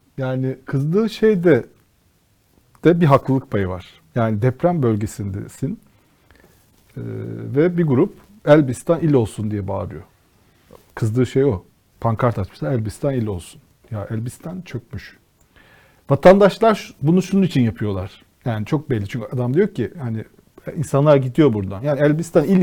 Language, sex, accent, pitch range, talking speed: Turkish, male, native, 125-170 Hz, 135 wpm